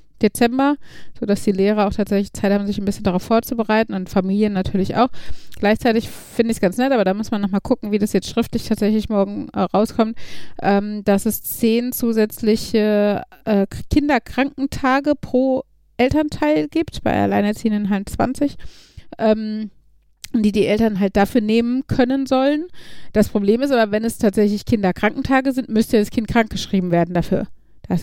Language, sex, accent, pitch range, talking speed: German, female, German, 200-240 Hz, 165 wpm